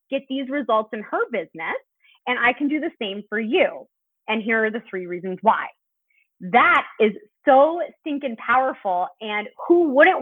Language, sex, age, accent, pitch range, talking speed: English, female, 20-39, American, 210-290 Hz, 170 wpm